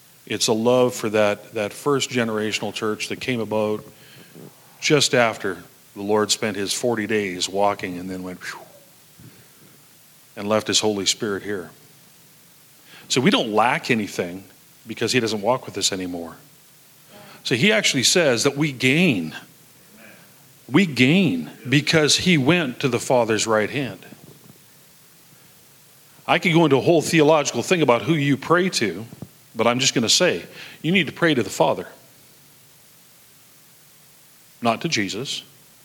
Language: English